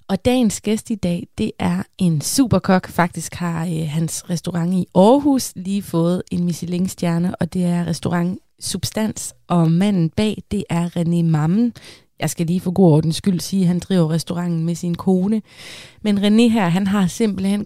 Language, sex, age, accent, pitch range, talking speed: Danish, female, 20-39, native, 170-210 Hz, 180 wpm